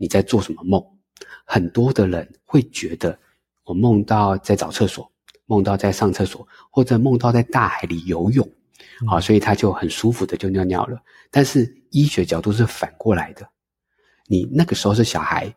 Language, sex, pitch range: Chinese, male, 95-120 Hz